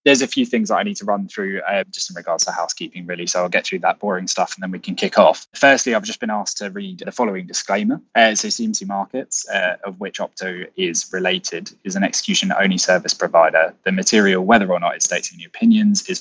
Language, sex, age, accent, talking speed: English, male, 20-39, British, 235 wpm